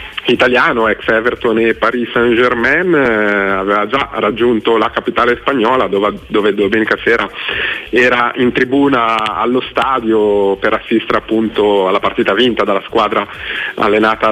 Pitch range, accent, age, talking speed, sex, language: 100-125 Hz, native, 30-49, 130 wpm, male, Italian